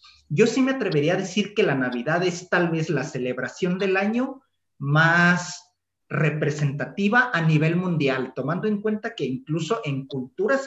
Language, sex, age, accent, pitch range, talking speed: Spanish, male, 40-59, Mexican, 140-185 Hz, 160 wpm